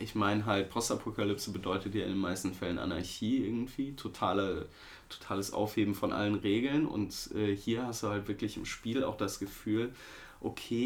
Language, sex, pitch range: German, male, 90-105 Hz